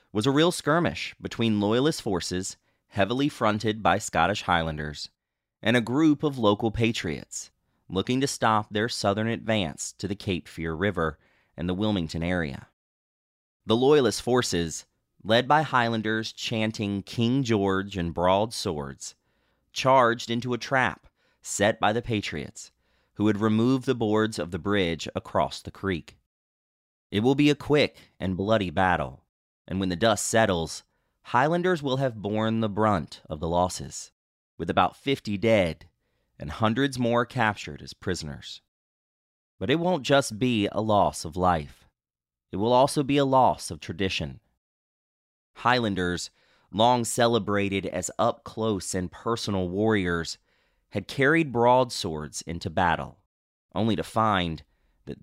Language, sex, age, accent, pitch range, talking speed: English, male, 30-49, American, 85-115 Hz, 140 wpm